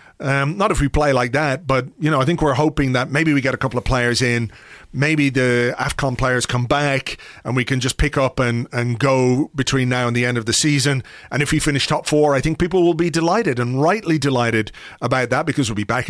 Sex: male